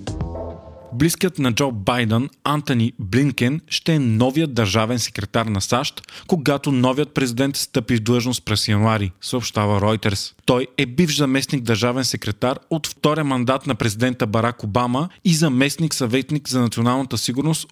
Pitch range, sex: 115-145 Hz, male